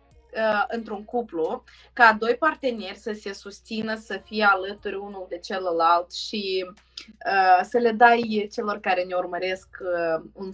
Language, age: Romanian, 20-39